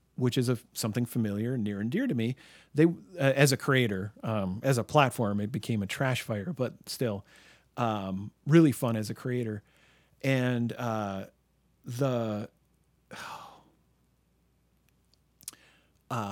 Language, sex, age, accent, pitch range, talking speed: English, male, 40-59, American, 110-145 Hz, 135 wpm